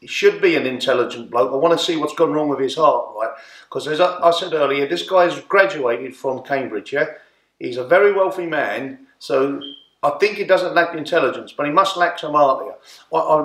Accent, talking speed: British, 210 wpm